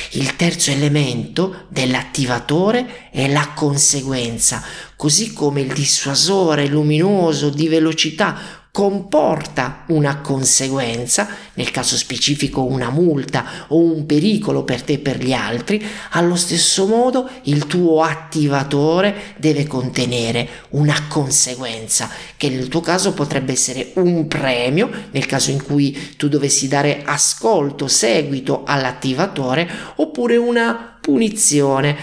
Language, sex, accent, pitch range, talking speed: Italian, male, native, 130-170 Hz, 115 wpm